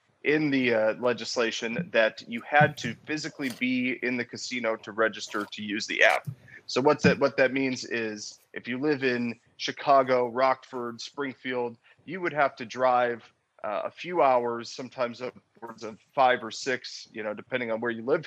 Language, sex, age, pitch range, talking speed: English, male, 30-49, 115-135 Hz, 180 wpm